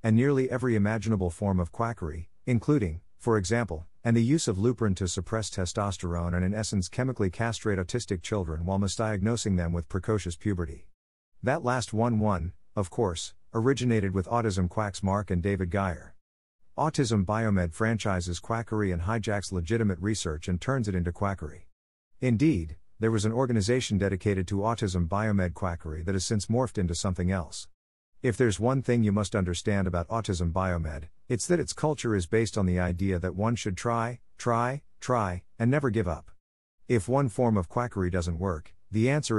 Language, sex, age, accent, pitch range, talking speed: English, male, 50-69, American, 90-115 Hz, 170 wpm